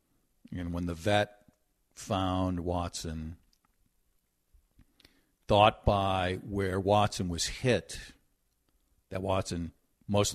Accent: American